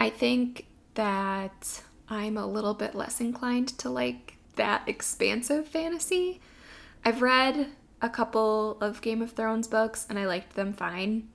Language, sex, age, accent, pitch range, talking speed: English, female, 20-39, American, 185-235 Hz, 150 wpm